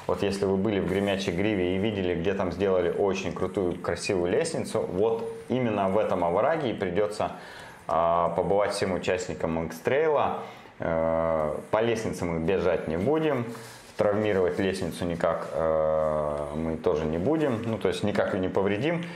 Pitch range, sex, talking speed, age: 85-110 Hz, male, 155 wpm, 20-39